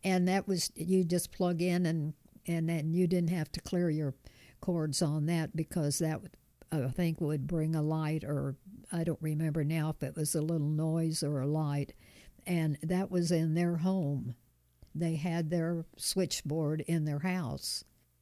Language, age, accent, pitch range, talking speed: English, 60-79, American, 150-170 Hz, 180 wpm